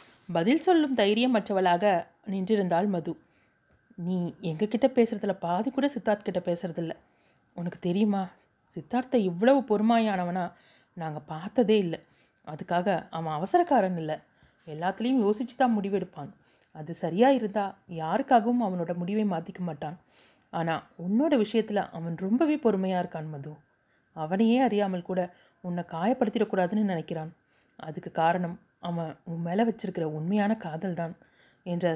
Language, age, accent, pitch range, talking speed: Tamil, 30-49, native, 170-220 Hz, 115 wpm